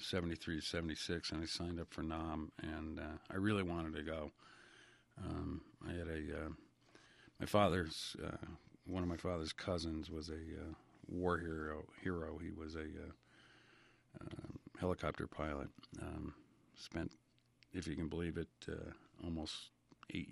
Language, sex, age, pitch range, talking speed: English, male, 50-69, 80-95 Hz, 155 wpm